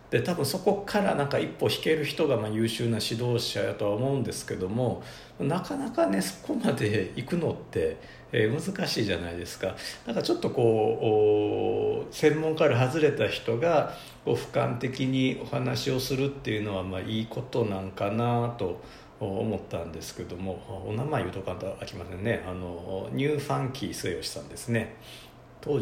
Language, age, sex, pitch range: Japanese, 50-69, male, 90-140 Hz